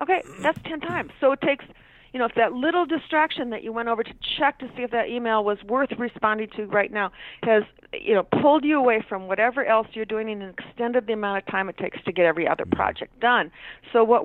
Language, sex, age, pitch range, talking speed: English, female, 40-59, 190-240 Hz, 240 wpm